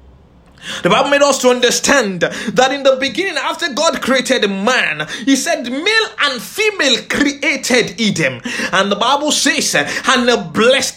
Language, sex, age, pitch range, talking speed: English, male, 20-39, 240-320 Hz, 150 wpm